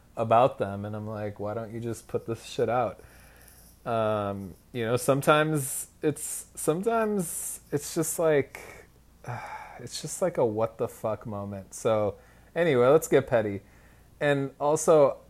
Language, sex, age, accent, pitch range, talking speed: English, male, 20-39, American, 115-140 Hz, 135 wpm